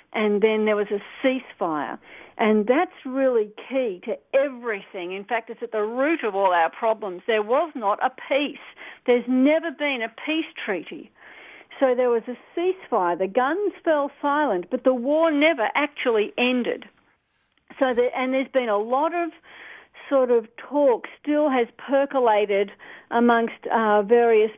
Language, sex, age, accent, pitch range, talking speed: English, female, 50-69, Australian, 225-285 Hz, 160 wpm